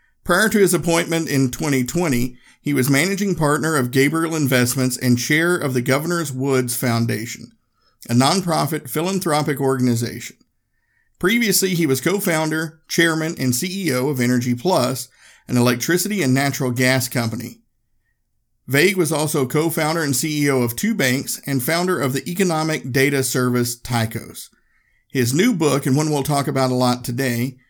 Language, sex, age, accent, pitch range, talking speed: English, male, 50-69, American, 125-160 Hz, 145 wpm